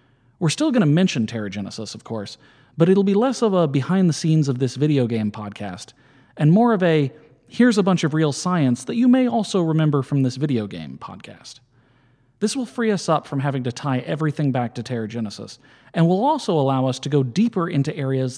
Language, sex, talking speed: English, male, 215 wpm